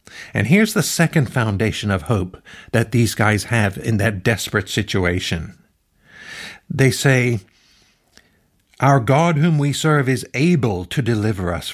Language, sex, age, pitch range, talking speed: English, male, 50-69, 95-135 Hz, 140 wpm